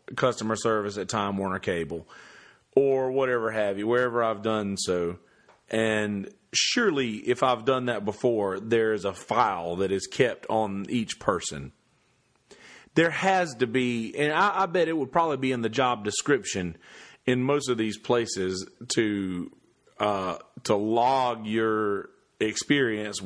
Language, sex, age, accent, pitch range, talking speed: English, male, 40-59, American, 100-125 Hz, 145 wpm